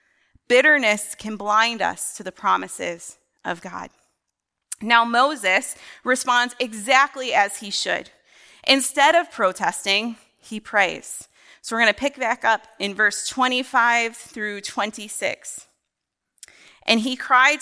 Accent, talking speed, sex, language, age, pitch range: American, 125 wpm, female, English, 30-49, 200-255 Hz